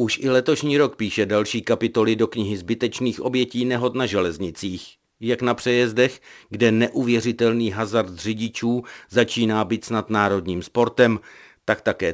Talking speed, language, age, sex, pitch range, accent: 140 wpm, Czech, 50-69, male, 110-125 Hz, native